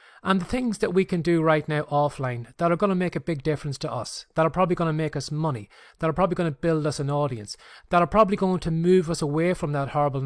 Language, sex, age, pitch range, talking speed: English, male, 30-49, 140-180 Hz, 280 wpm